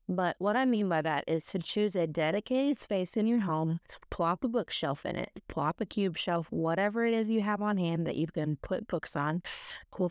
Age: 20-39